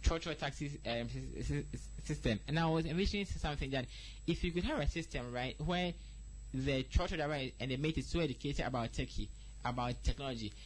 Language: English